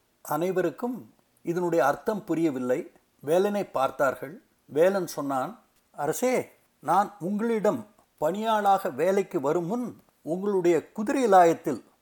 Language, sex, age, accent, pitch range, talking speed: Tamil, male, 60-79, native, 165-220 Hz, 80 wpm